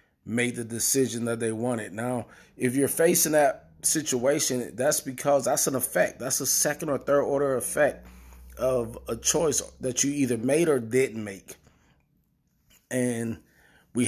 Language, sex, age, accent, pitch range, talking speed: English, male, 20-39, American, 115-140 Hz, 155 wpm